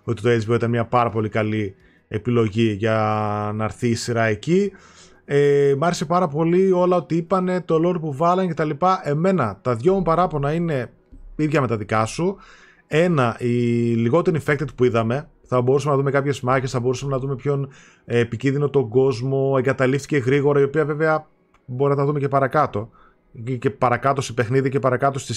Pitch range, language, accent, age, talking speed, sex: 125-170 Hz, Greek, native, 20-39, 185 wpm, male